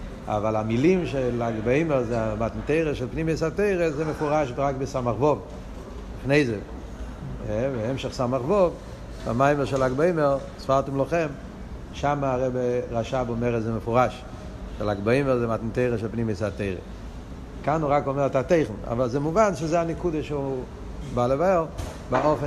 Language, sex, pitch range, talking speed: Hebrew, male, 115-160 Hz, 120 wpm